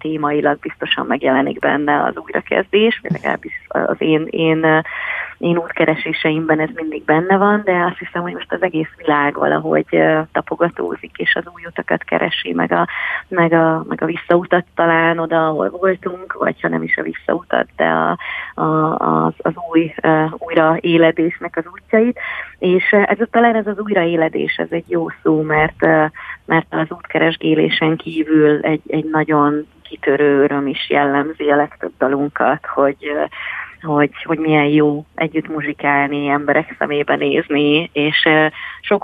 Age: 30-49